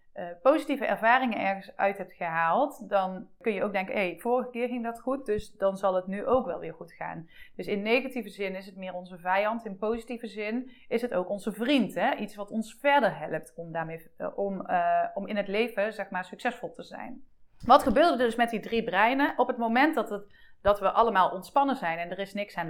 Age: 30-49